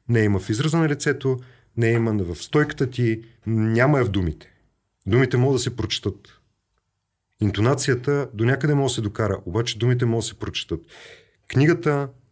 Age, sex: 40-59, male